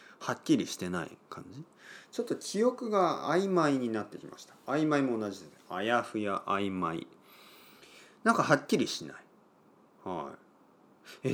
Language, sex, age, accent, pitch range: Japanese, male, 40-59, native, 105-180 Hz